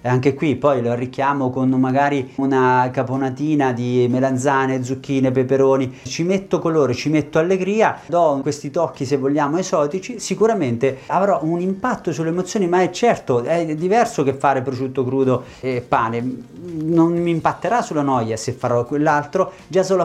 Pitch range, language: 130-160 Hz, Italian